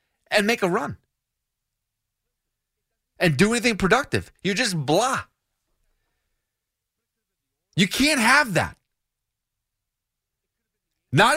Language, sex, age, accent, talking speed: English, male, 40-59, American, 85 wpm